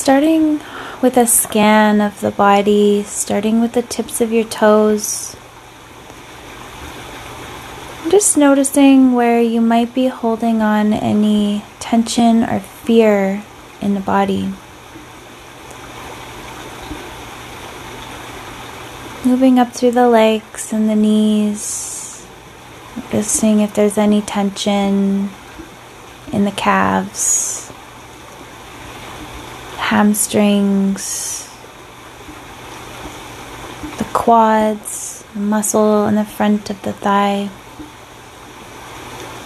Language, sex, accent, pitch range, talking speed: English, female, American, 205-235 Hz, 85 wpm